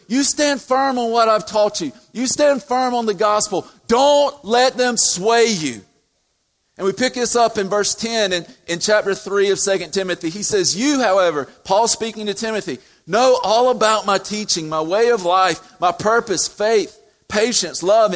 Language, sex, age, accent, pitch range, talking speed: English, male, 40-59, American, 185-230 Hz, 185 wpm